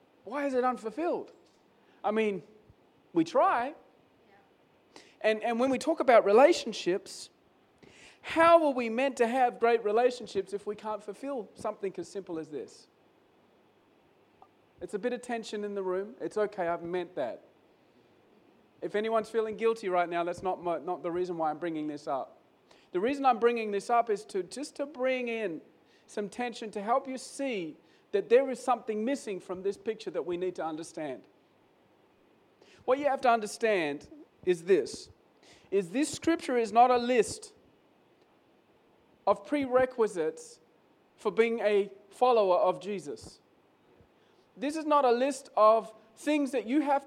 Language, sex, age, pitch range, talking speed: English, male, 40-59, 205-260 Hz, 160 wpm